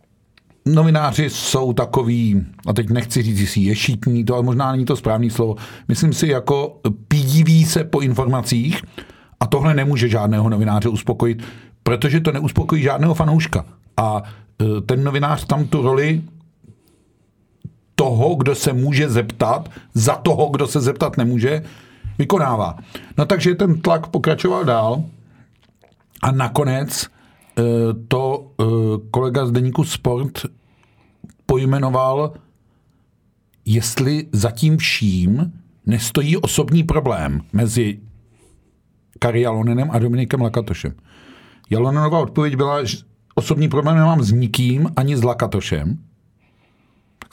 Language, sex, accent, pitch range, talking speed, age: Czech, male, native, 115-145 Hz, 115 wpm, 50-69